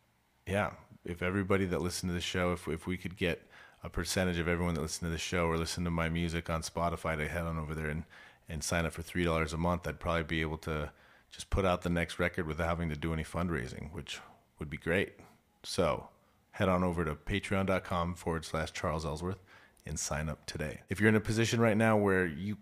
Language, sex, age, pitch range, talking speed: English, male, 30-49, 85-100 Hz, 230 wpm